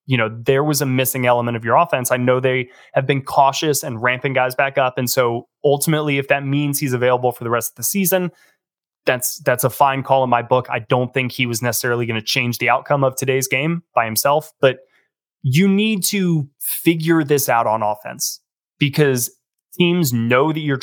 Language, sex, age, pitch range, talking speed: English, male, 20-39, 125-150 Hz, 210 wpm